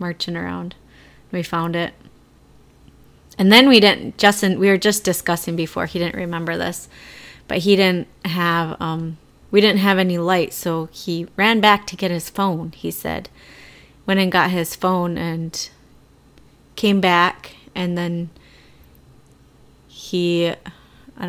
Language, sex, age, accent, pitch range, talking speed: English, female, 30-49, American, 165-185 Hz, 145 wpm